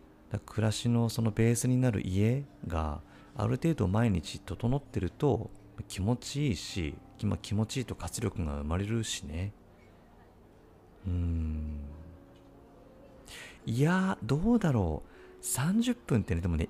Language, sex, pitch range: Japanese, male, 85-125 Hz